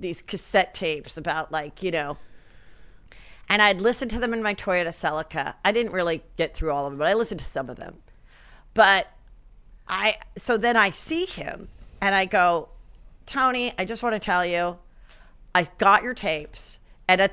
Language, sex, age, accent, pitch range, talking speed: English, female, 40-59, American, 180-260 Hz, 185 wpm